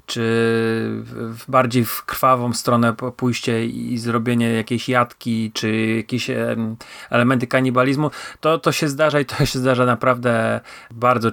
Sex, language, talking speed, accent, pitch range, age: male, English, 140 wpm, Polish, 115-130 Hz, 30-49